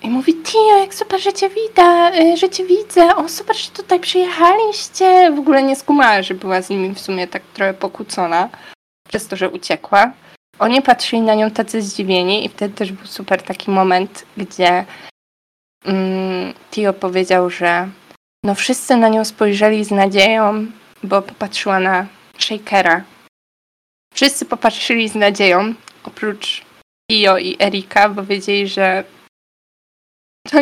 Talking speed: 145 wpm